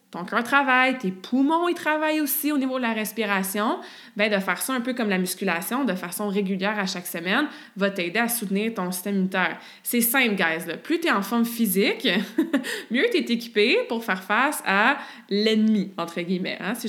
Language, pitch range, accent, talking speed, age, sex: French, 185-235 Hz, Canadian, 215 wpm, 20-39, female